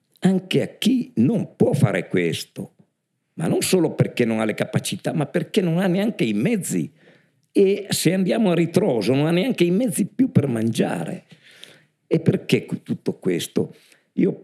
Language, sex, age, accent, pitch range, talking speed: Italian, male, 50-69, native, 115-175 Hz, 165 wpm